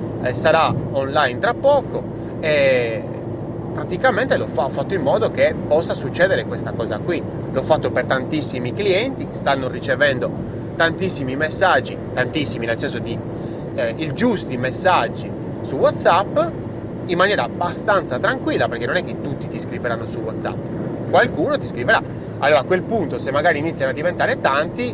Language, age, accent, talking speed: Italian, 30-49, native, 150 wpm